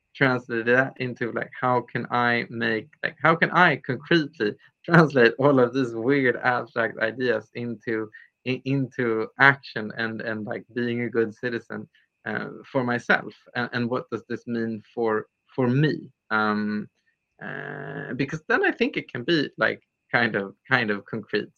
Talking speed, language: 160 wpm, English